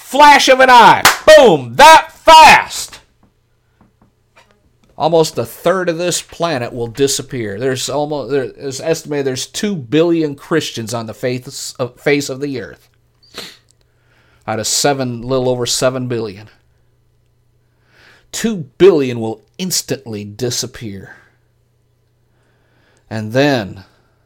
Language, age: English, 50-69